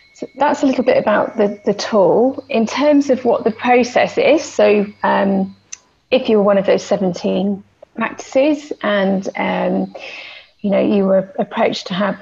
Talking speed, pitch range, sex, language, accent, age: 160 wpm, 200-235 Hz, female, English, British, 30-49